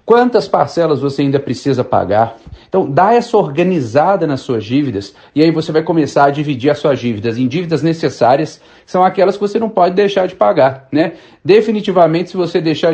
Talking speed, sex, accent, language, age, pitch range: 190 wpm, male, Brazilian, Portuguese, 40-59, 140-180 Hz